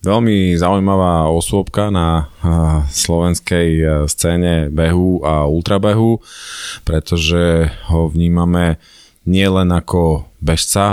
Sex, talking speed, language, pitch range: male, 100 wpm, Slovak, 80-95 Hz